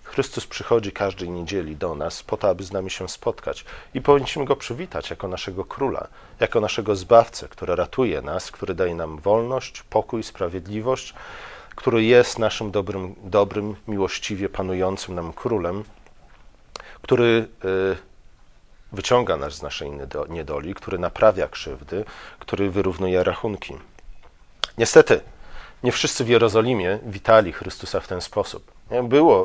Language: Polish